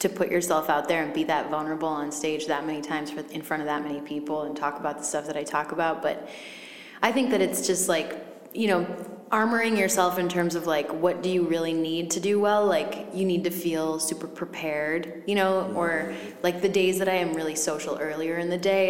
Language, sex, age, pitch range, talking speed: English, female, 20-39, 155-185 Hz, 240 wpm